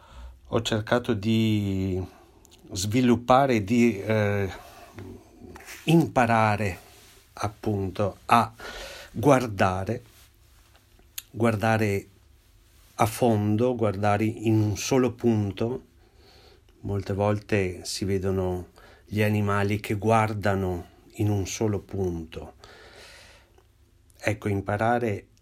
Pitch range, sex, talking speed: 95-115 Hz, male, 75 wpm